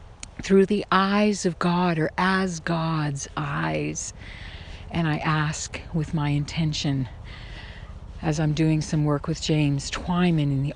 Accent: American